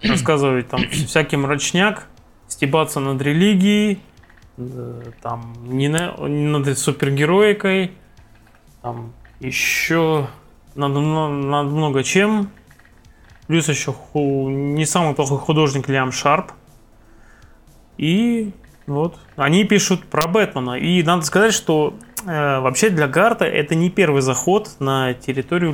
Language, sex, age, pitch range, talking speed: Russian, male, 20-39, 135-165 Hz, 115 wpm